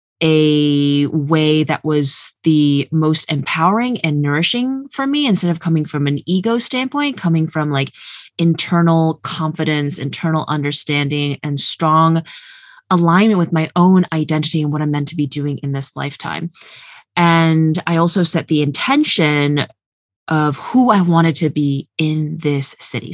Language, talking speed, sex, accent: English, 150 wpm, female, American